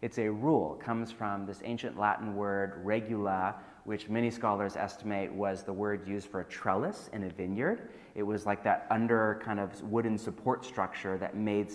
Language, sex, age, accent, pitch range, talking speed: English, male, 30-49, American, 95-110 Hz, 185 wpm